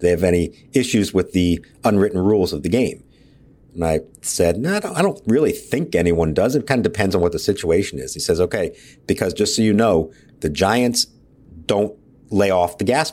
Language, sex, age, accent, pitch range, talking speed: English, male, 50-69, American, 90-125 Hz, 215 wpm